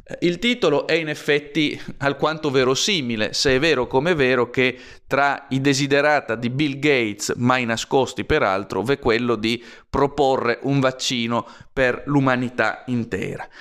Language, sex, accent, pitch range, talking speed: Italian, male, native, 115-140 Hz, 135 wpm